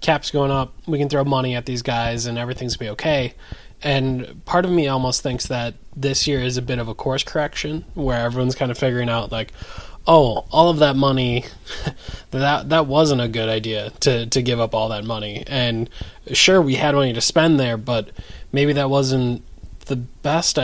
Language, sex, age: English, male, 20-39